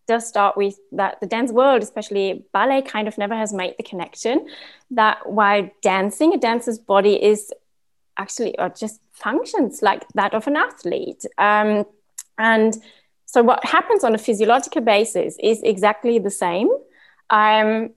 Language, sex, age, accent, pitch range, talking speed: English, female, 20-39, British, 195-230 Hz, 155 wpm